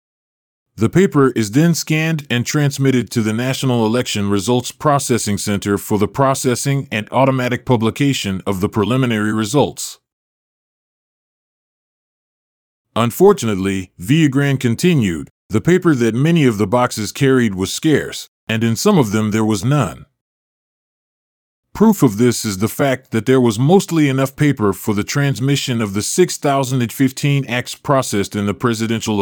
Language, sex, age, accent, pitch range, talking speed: English, male, 40-59, American, 110-140 Hz, 140 wpm